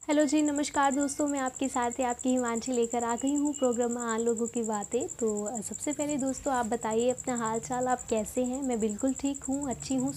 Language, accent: Hindi, native